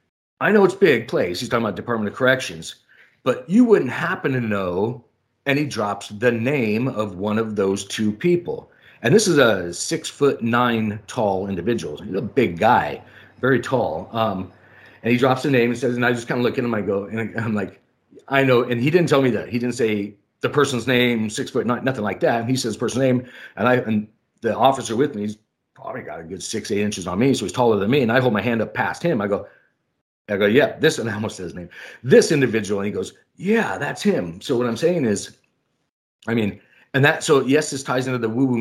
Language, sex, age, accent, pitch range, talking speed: English, male, 40-59, American, 105-135 Hz, 240 wpm